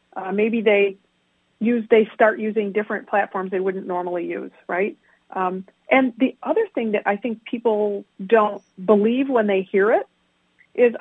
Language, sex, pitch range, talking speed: English, female, 195-230 Hz, 165 wpm